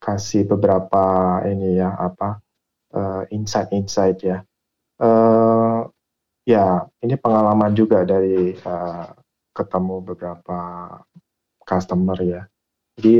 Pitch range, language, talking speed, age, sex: 95-110 Hz, Indonesian, 95 wpm, 20-39, male